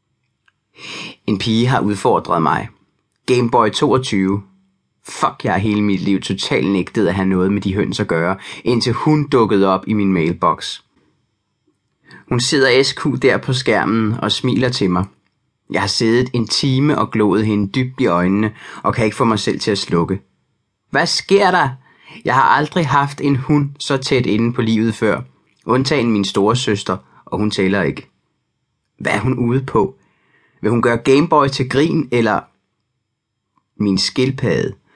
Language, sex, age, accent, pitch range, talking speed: Danish, male, 30-49, native, 100-125 Hz, 165 wpm